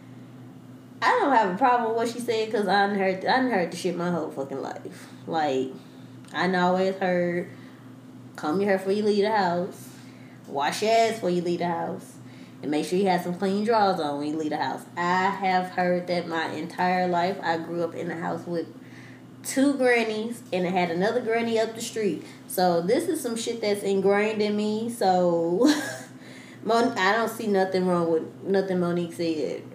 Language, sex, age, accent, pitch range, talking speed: English, female, 20-39, American, 175-240 Hz, 200 wpm